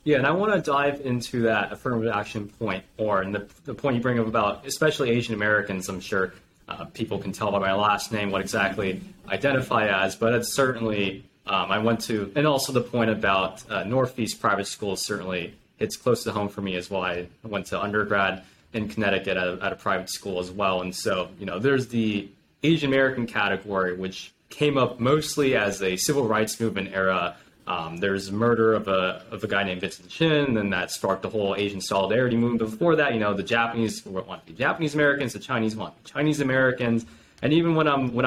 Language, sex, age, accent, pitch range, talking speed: English, male, 20-39, American, 95-125 Hz, 210 wpm